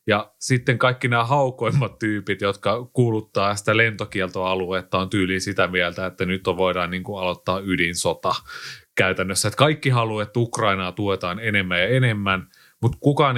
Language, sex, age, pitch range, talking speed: Finnish, male, 30-49, 95-120 Hz, 145 wpm